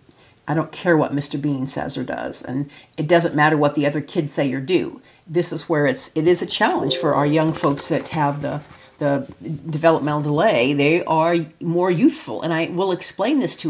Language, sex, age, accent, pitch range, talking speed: English, female, 50-69, American, 145-165 Hz, 215 wpm